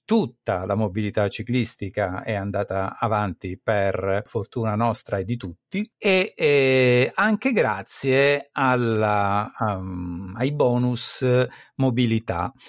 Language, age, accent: Italian, 50-69, native